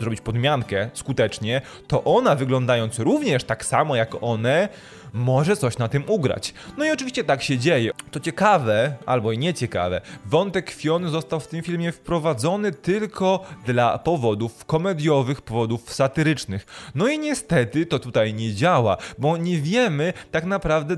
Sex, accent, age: male, native, 20-39